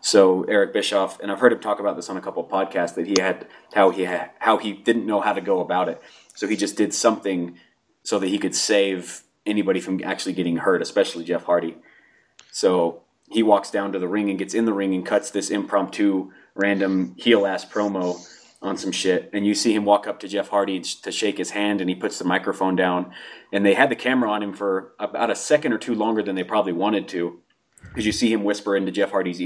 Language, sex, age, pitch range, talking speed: English, male, 30-49, 95-105 Hz, 240 wpm